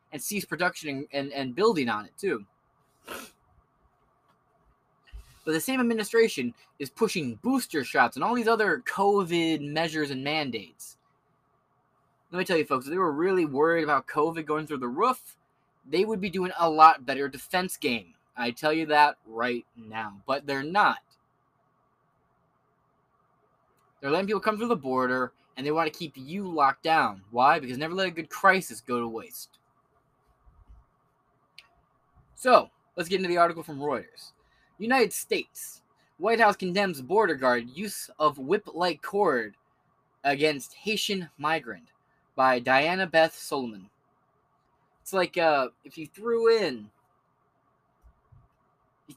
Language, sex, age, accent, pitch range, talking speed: English, male, 20-39, American, 140-190 Hz, 145 wpm